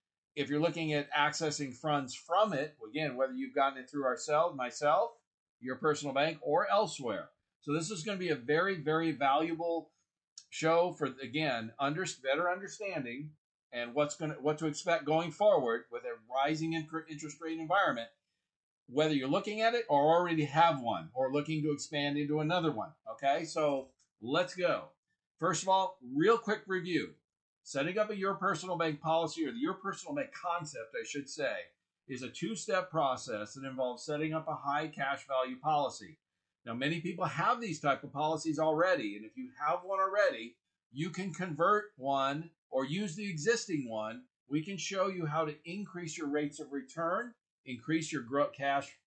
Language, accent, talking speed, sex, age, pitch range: English, American, 175 wpm, male, 50-69, 145-185 Hz